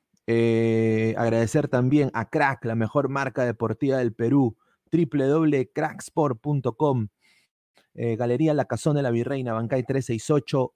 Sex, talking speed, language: male, 115 wpm, Spanish